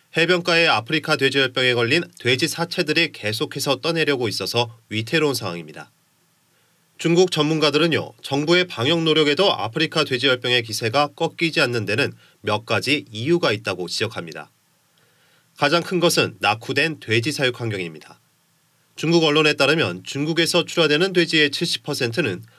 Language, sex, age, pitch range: Korean, male, 30-49, 120-160 Hz